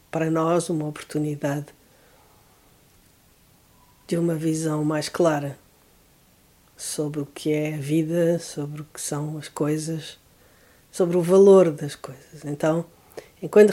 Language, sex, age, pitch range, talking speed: Portuguese, female, 50-69, 150-180 Hz, 120 wpm